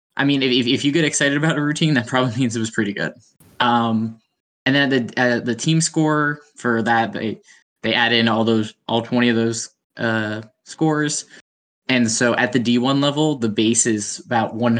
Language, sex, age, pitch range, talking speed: English, male, 10-29, 110-125 Hz, 205 wpm